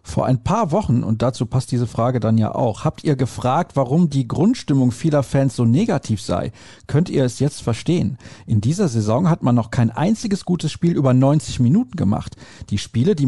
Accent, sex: German, male